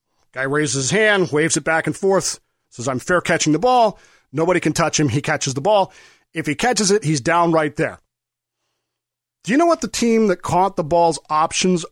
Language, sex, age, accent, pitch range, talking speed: English, male, 40-59, American, 145-195 Hz, 210 wpm